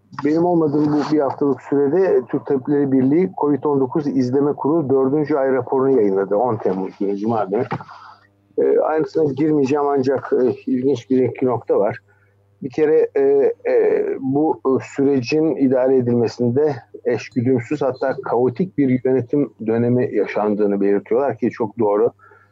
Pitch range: 110-145 Hz